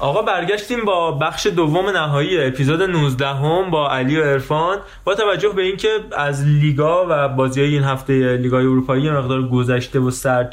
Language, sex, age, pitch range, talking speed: Persian, male, 20-39, 125-155 Hz, 165 wpm